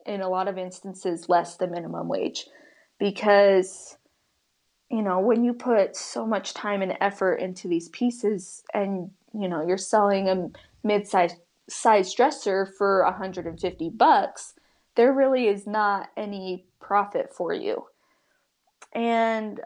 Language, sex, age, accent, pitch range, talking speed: English, female, 20-39, American, 190-235 Hz, 130 wpm